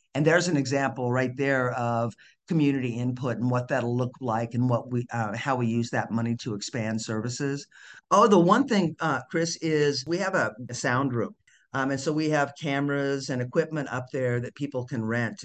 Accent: American